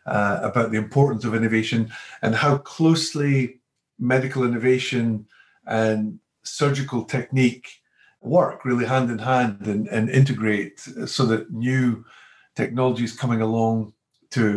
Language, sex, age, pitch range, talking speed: English, male, 50-69, 110-130 Hz, 120 wpm